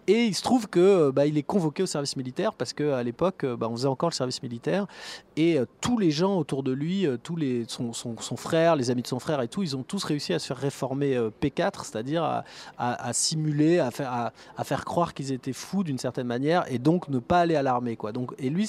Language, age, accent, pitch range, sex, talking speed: French, 30-49, French, 130-175 Hz, male, 260 wpm